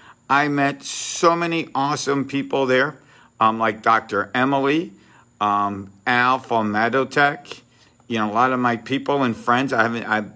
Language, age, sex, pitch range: English, 50-69, male, 115-140 Hz